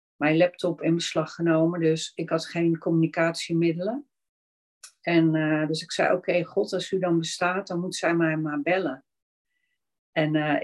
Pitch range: 150-175 Hz